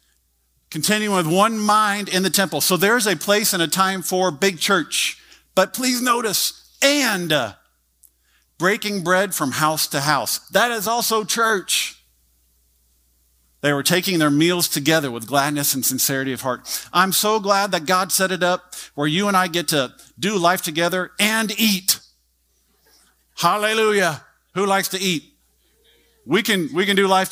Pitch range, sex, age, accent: 125-185 Hz, male, 50-69, American